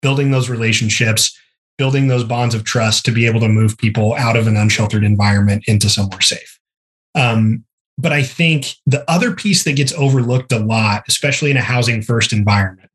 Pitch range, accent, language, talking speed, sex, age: 110-135 Hz, American, English, 185 wpm, male, 20-39